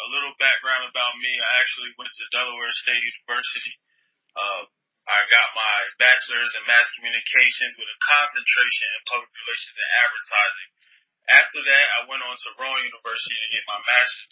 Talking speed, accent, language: 170 wpm, American, English